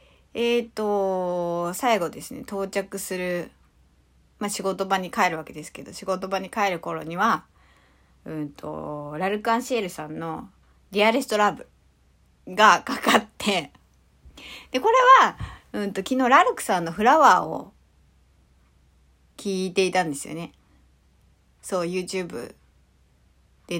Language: Japanese